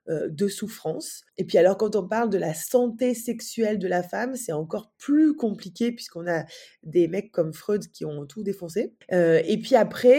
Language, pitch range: French, 180-240 Hz